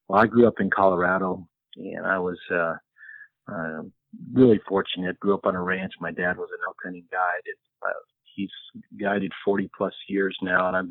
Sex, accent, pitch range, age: male, American, 95-130 Hz, 50-69